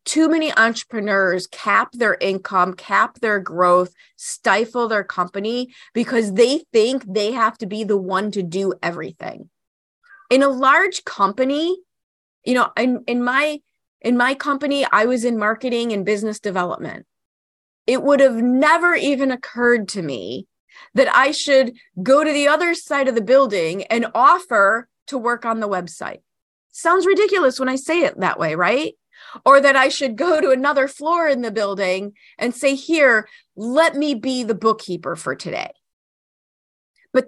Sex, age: female, 30-49